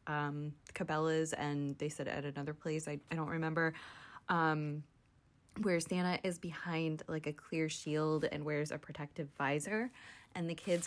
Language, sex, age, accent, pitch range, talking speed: English, female, 20-39, American, 155-185 Hz, 160 wpm